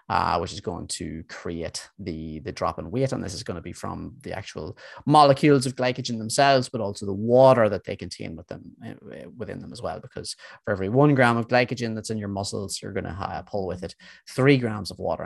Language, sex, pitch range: English, male, 95-125 Hz